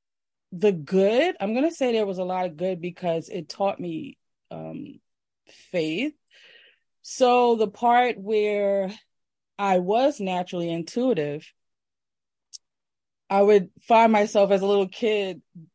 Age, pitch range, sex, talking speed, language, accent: 20-39, 165-205 Hz, female, 130 wpm, English, American